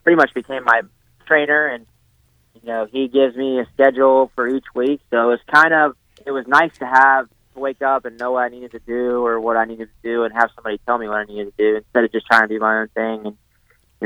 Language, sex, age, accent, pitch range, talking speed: English, male, 20-39, American, 110-125 Hz, 270 wpm